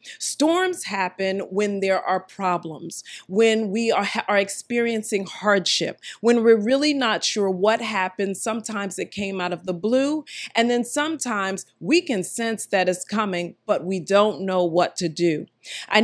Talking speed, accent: 160 wpm, American